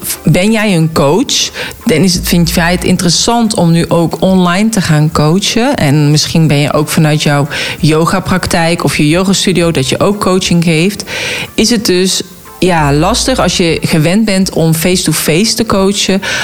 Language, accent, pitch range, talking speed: Dutch, Dutch, 155-195 Hz, 175 wpm